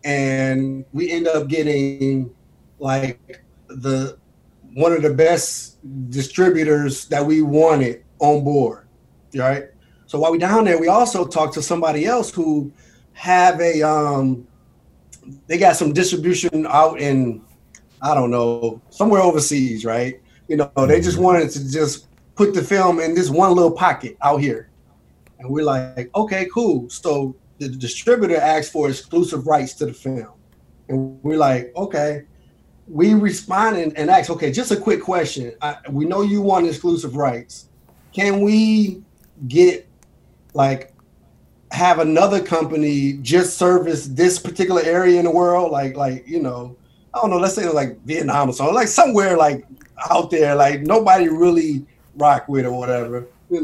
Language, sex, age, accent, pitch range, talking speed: English, male, 30-49, American, 135-180 Hz, 155 wpm